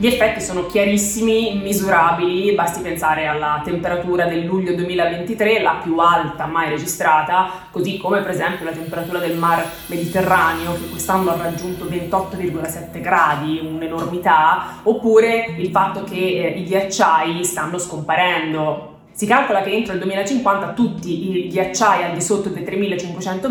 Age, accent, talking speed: 20-39, native, 145 wpm